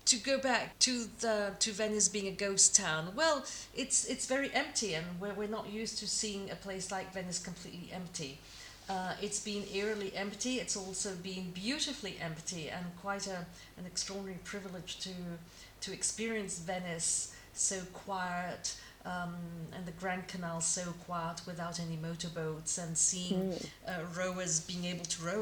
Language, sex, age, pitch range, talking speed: English, female, 40-59, 170-205 Hz, 165 wpm